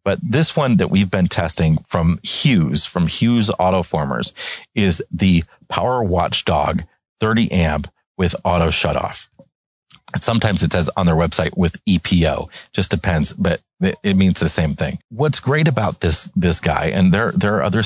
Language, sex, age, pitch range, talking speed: English, male, 30-49, 85-105 Hz, 165 wpm